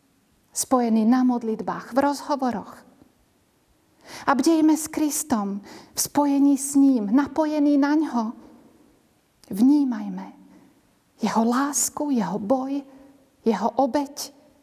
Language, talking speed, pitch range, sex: Slovak, 95 wpm, 215-270 Hz, female